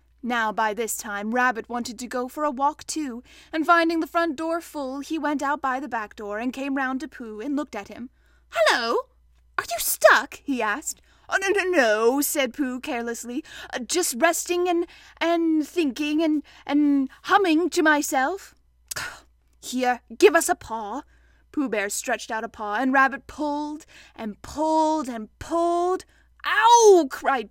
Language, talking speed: English, 170 wpm